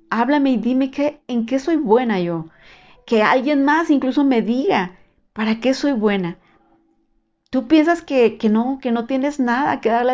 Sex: female